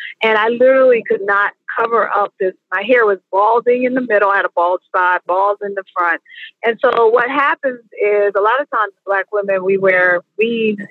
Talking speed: 210 wpm